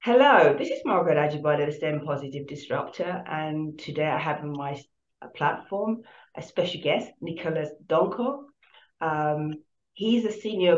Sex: female